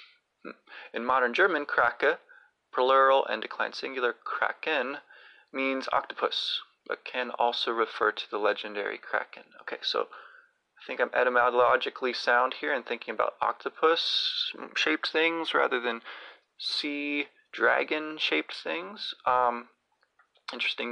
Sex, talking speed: male, 110 wpm